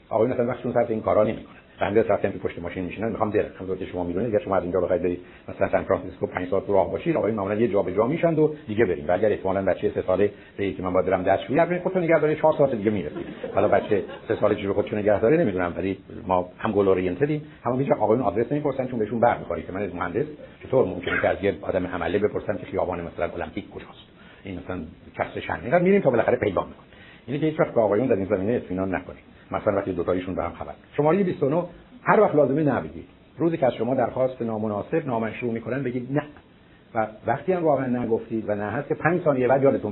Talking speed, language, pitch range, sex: 185 wpm, Persian, 100-145 Hz, male